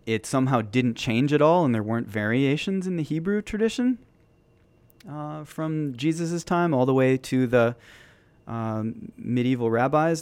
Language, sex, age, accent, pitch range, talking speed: English, male, 30-49, American, 105-130 Hz, 155 wpm